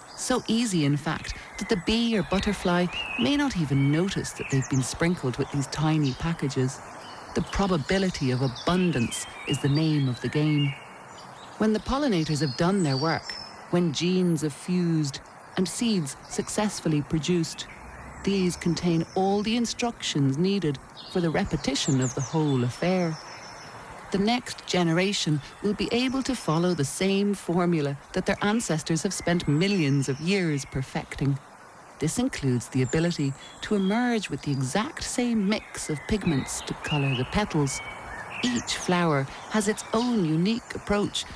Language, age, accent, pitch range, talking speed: English, 40-59, Irish, 145-200 Hz, 150 wpm